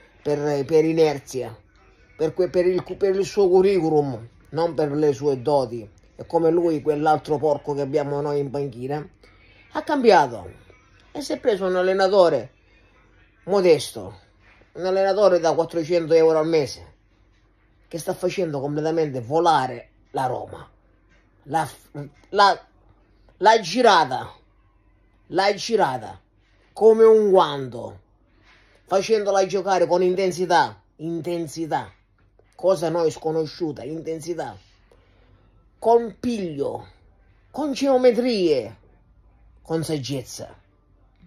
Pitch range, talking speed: 110-180 Hz, 105 wpm